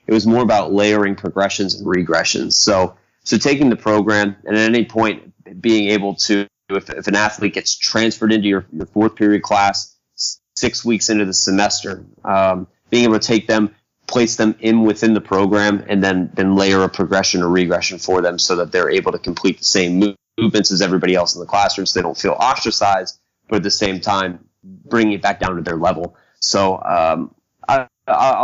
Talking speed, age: 195 wpm, 30-49